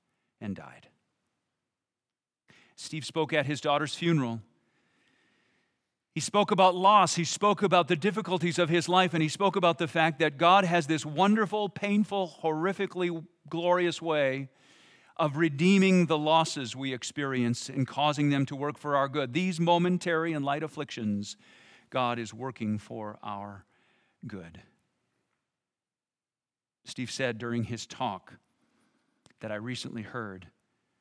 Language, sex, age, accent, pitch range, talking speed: English, male, 50-69, American, 115-175 Hz, 135 wpm